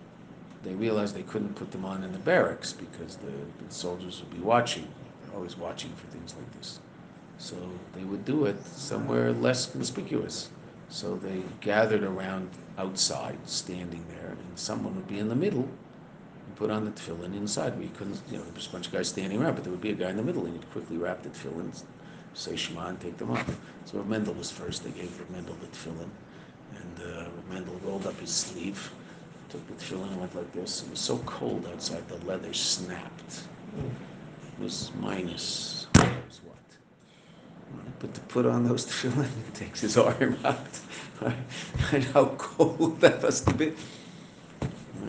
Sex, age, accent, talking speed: male, 50-69, Canadian, 185 wpm